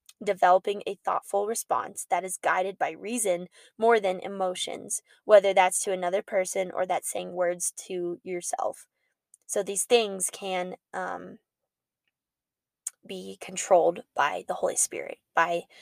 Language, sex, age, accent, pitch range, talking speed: English, female, 10-29, American, 185-230 Hz, 135 wpm